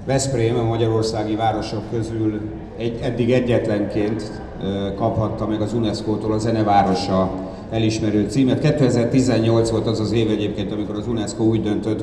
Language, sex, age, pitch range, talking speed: Hungarian, male, 50-69, 100-115 Hz, 135 wpm